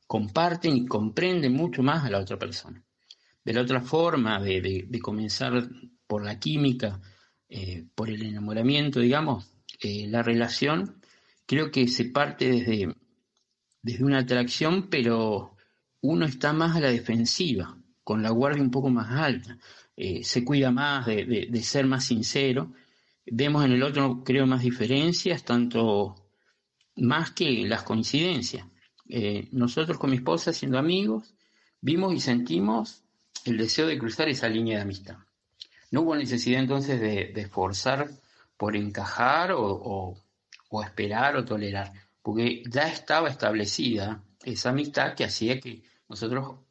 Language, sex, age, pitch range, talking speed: Spanish, male, 50-69, 105-135 Hz, 145 wpm